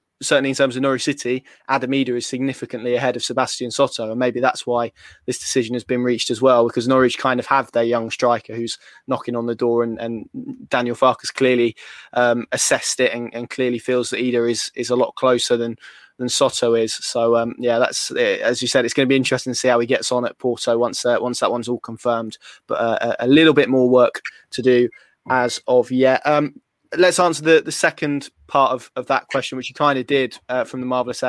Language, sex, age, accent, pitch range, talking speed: English, male, 20-39, British, 120-130 Hz, 230 wpm